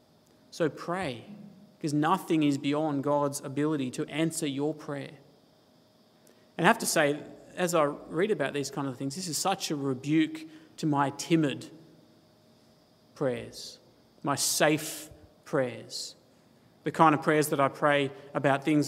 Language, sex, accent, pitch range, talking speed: English, male, Australian, 140-160 Hz, 145 wpm